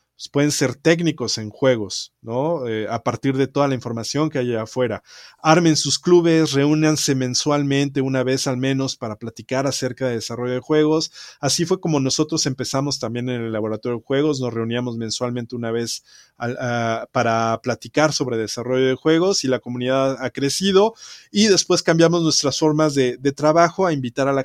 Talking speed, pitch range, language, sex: 175 wpm, 120-155 Hz, Spanish, male